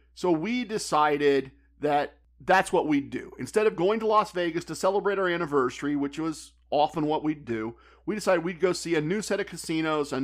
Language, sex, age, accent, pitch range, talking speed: English, male, 50-69, American, 140-175 Hz, 205 wpm